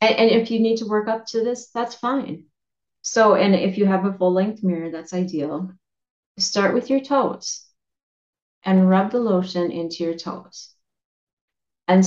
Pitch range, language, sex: 165-195 Hz, English, female